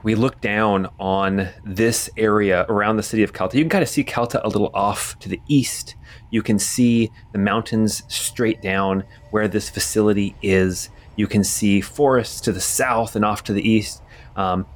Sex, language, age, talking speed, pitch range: male, English, 30-49, 190 wpm, 95-115 Hz